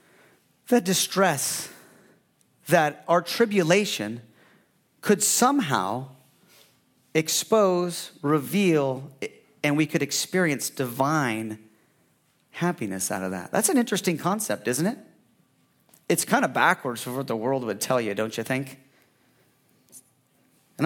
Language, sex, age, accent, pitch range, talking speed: English, male, 40-59, American, 135-190 Hz, 110 wpm